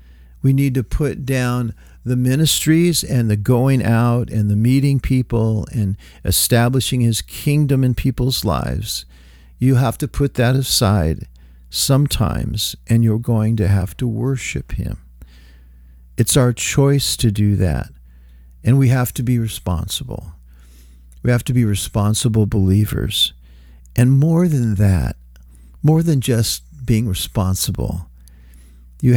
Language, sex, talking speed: English, male, 135 wpm